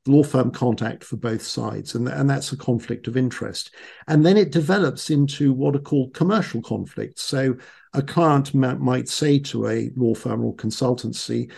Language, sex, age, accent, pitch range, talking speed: English, male, 50-69, British, 120-150 Hz, 180 wpm